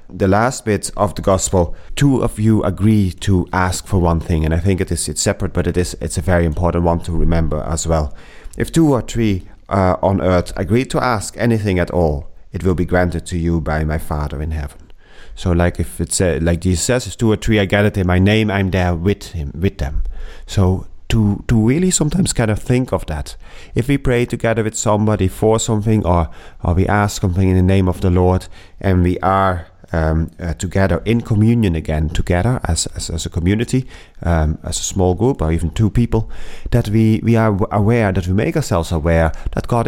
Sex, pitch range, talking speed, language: male, 85-110 Hz, 220 wpm, English